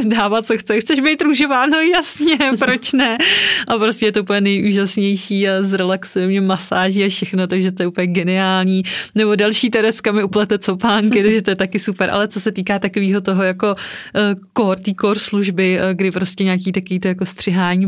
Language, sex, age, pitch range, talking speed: Czech, female, 20-39, 180-200 Hz, 190 wpm